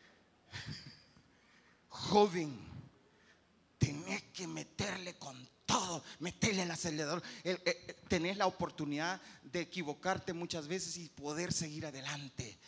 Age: 30-49